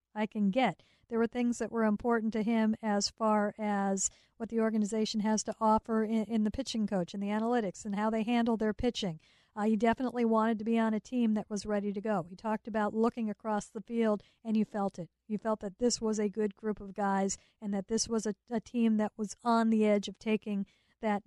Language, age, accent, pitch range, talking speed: English, 50-69, American, 205-230 Hz, 235 wpm